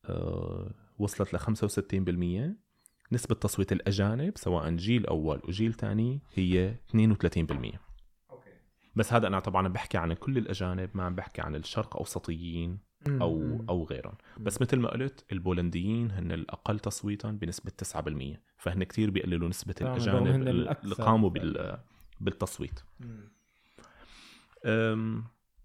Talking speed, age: 125 wpm, 30-49